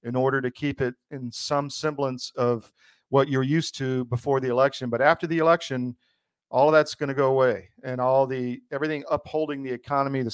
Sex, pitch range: male, 125-140 Hz